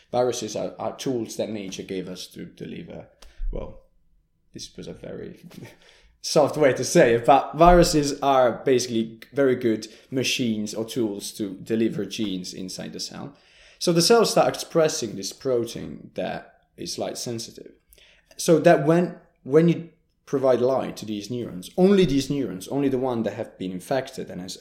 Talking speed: 165 wpm